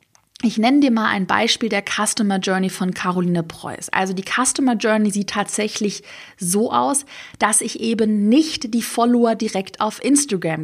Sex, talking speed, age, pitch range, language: female, 165 wpm, 20-39, 195-245 Hz, German